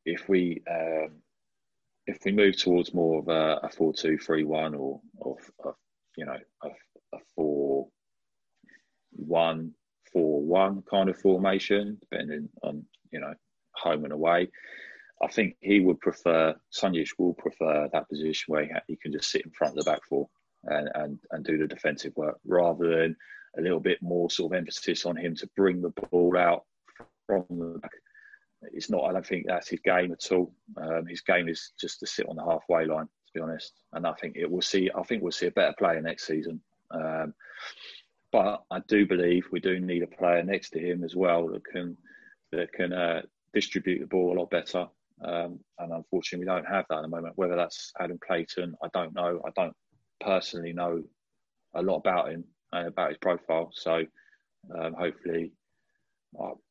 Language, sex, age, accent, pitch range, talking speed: English, male, 30-49, British, 80-90 Hz, 195 wpm